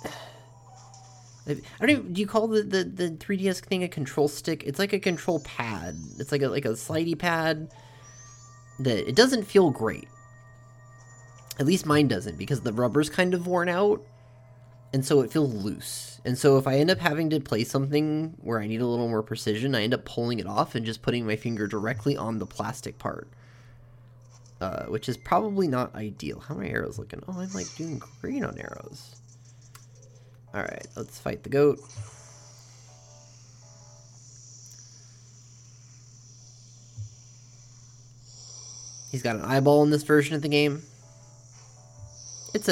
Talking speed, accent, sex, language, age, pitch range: 160 wpm, American, male, English, 20-39, 120-140 Hz